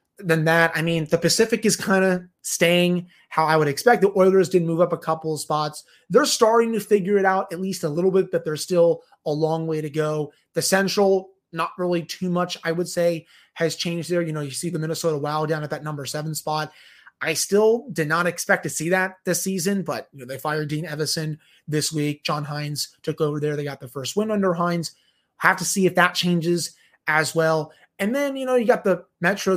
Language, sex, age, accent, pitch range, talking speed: English, male, 30-49, American, 155-185 Hz, 225 wpm